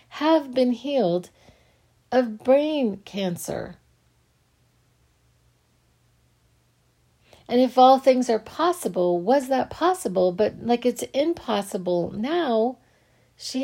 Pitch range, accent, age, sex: 190-255 Hz, American, 40-59, female